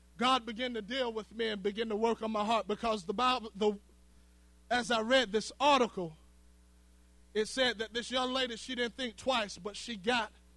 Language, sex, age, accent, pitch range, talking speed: English, male, 20-39, American, 200-260 Hz, 200 wpm